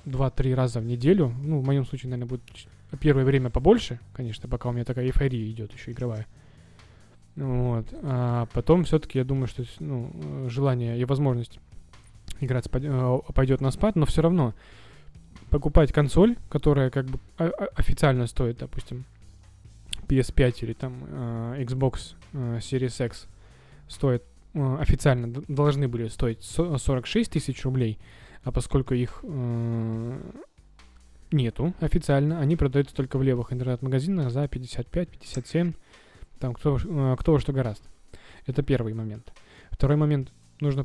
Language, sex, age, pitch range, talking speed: Russian, male, 20-39, 110-140 Hz, 120 wpm